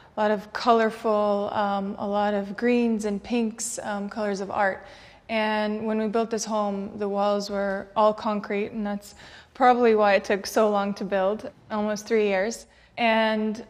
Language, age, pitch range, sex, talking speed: English, 20-39, 200-220 Hz, female, 175 wpm